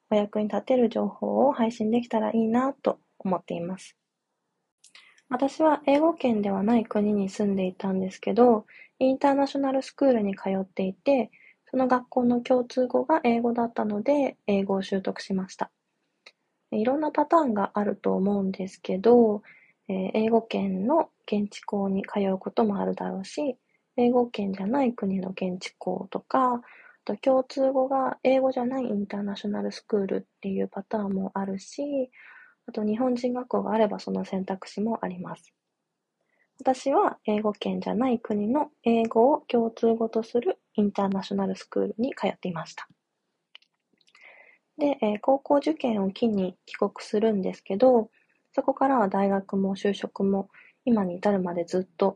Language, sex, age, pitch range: Japanese, female, 20-39, 195-255 Hz